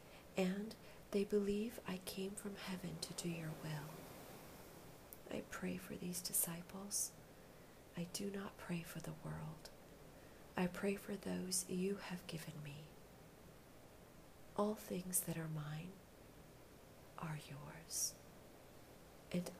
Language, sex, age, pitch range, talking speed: English, female, 40-59, 160-190 Hz, 120 wpm